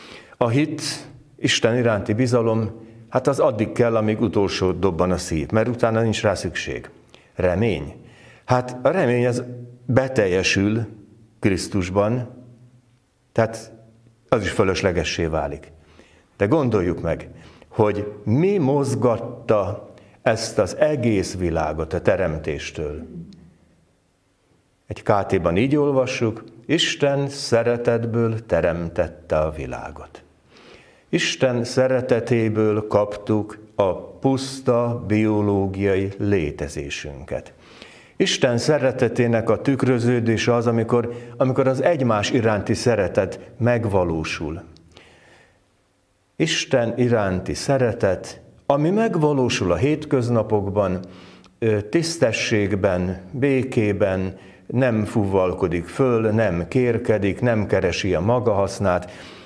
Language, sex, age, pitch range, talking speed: Hungarian, male, 60-79, 95-125 Hz, 90 wpm